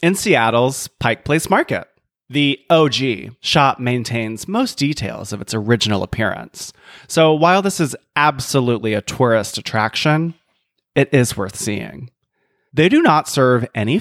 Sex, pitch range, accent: male, 110-145 Hz, American